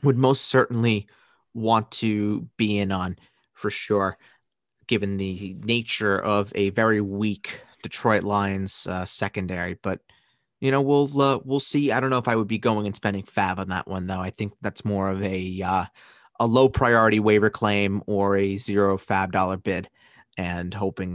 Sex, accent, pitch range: male, American, 95-110 Hz